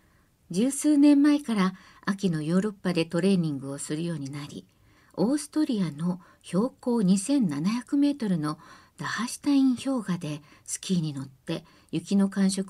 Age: 50-69